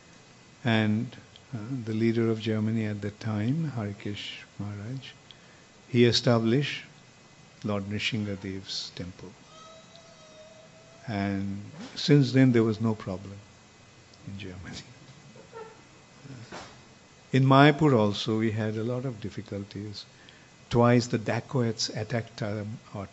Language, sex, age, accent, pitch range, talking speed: English, male, 50-69, Indian, 105-120 Hz, 100 wpm